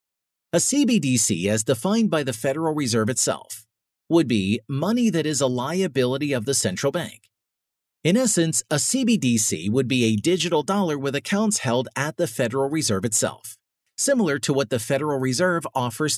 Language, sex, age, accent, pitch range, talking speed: English, male, 40-59, American, 125-175 Hz, 165 wpm